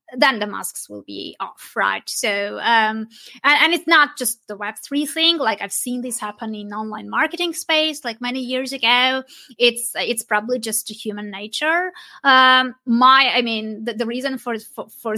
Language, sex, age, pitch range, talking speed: English, female, 20-39, 220-260 Hz, 180 wpm